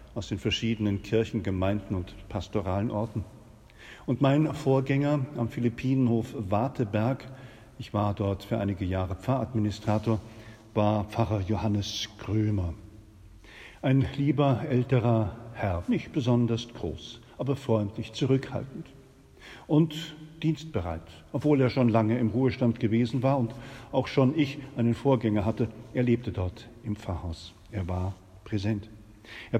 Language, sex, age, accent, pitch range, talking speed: German, male, 50-69, German, 100-130 Hz, 125 wpm